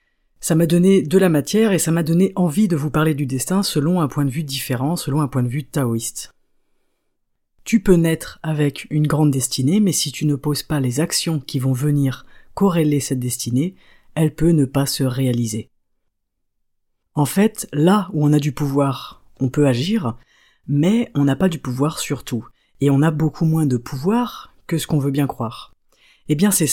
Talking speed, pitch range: 200 wpm, 130-170 Hz